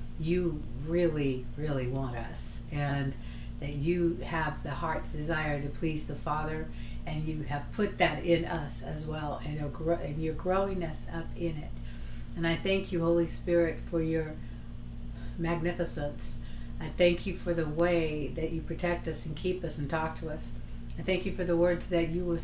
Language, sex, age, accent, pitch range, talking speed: English, female, 50-69, American, 145-175 Hz, 180 wpm